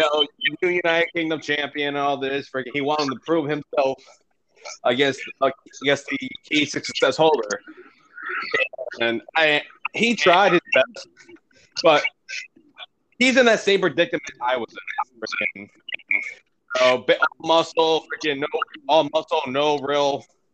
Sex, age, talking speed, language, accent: male, 20-39, 130 wpm, English, American